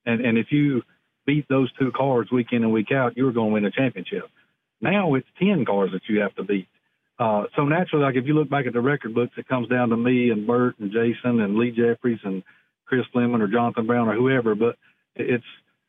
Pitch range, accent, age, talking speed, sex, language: 105-125 Hz, American, 50-69, 235 wpm, male, English